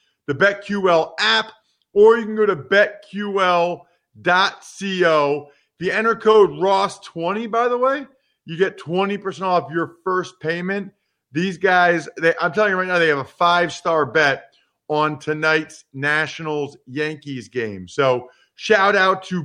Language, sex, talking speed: English, male, 135 wpm